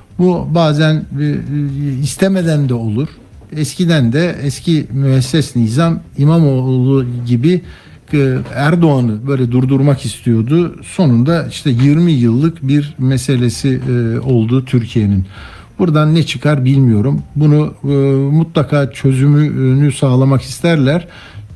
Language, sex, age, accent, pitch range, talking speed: Turkish, male, 60-79, native, 130-165 Hz, 90 wpm